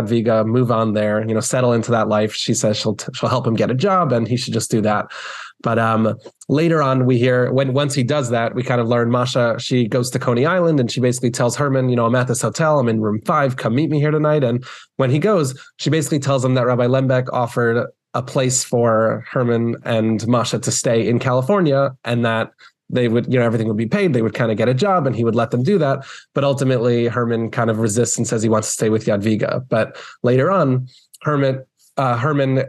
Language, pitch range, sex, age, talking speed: English, 115-130 Hz, male, 20-39, 240 wpm